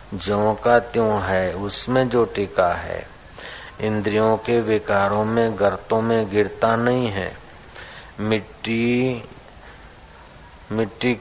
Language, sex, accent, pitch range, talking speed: Hindi, male, native, 100-120 Hz, 100 wpm